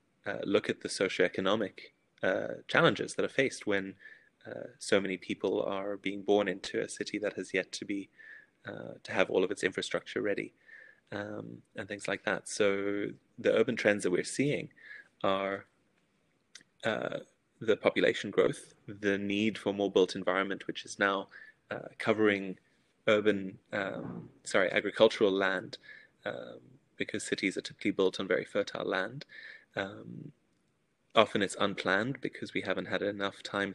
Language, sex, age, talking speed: English, male, 20-39, 155 wpm